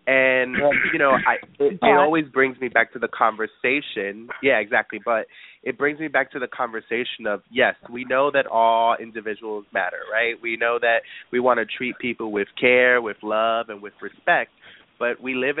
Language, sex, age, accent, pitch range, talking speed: English, male, 20-39, American, 110-130 Hz, 190 wpm